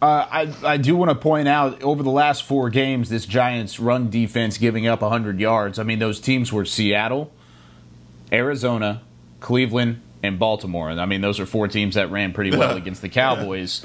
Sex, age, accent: male, 30-49, American